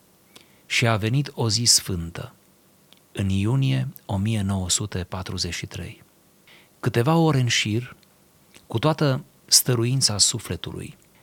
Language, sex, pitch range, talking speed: Romanian, male, 105-140 Hz, 90 wpm